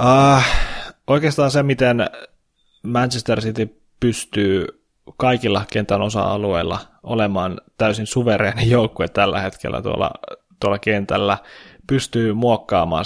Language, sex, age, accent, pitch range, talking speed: Finnish, male, 20-39, native, 105-120 Hz, 95 wpm